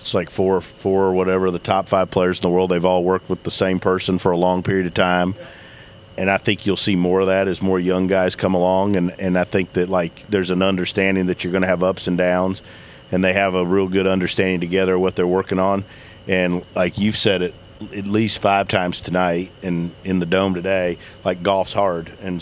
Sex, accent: male, American